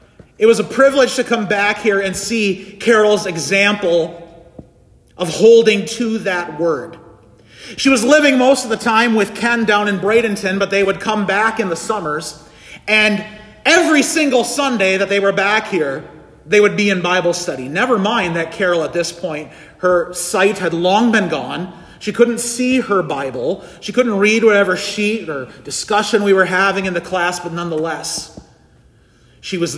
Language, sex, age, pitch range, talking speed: English, male, 40-59, 175-235 Hz, 175 wpm